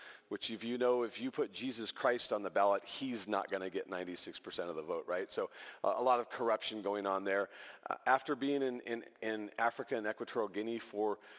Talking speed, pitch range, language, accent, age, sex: 210 wpm, 95-120 Hz, English, American, 40-59, male